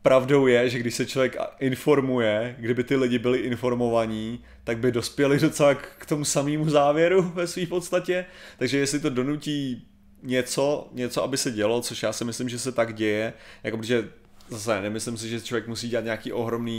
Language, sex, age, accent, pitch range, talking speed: Czech, male, 30-49, native, 110-130 Hz, 180 wpm